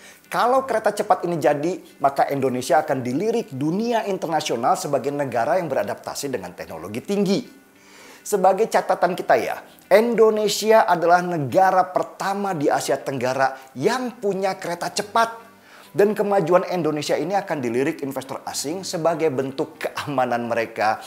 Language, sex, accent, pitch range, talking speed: Indonesian, male, native, 130-200 Hz, 130 wpm